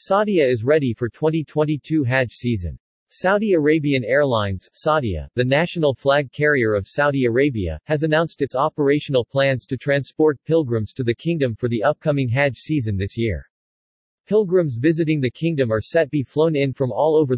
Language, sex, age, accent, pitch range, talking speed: English, male, 40-59, American, 120-150 Hz, 170 wpm